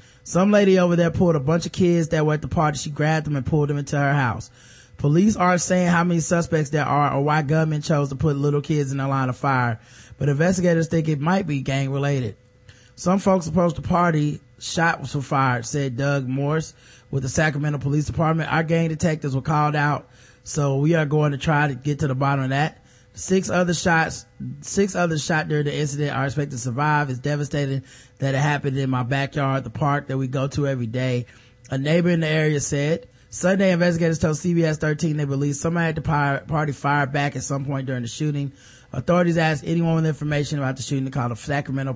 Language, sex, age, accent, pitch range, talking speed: English, male, 20-39, American, 130-165 Hz, 220 wpm